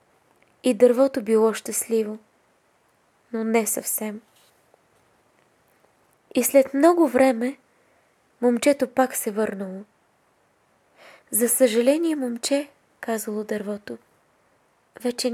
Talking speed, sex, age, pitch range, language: 80 wpm, female, 20-39, 210-255 Hz, Bulgarian